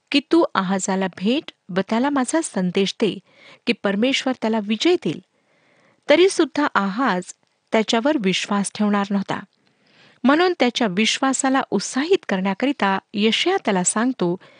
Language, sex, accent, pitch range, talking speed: Marathi, female, native, 195-275 Hz, 120 wpm